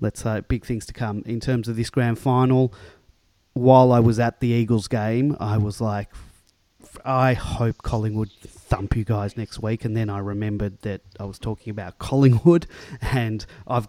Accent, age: Australian, 30-49